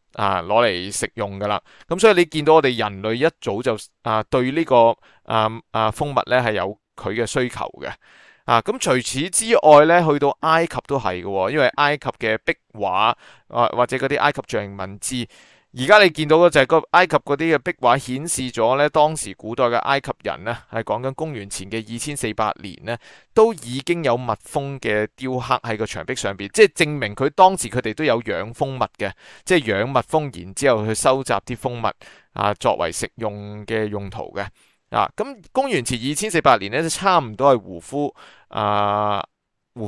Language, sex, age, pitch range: Chinese, male, 30-49, 110-145 Hz